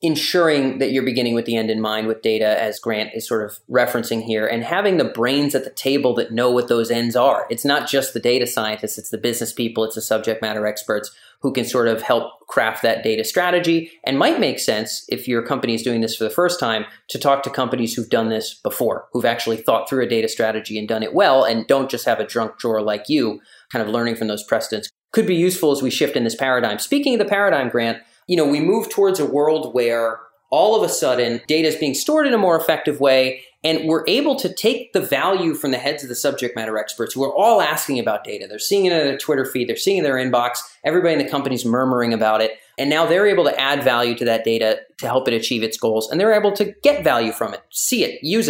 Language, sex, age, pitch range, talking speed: English, male, 30-49, 115-165 Hz, 255 wpm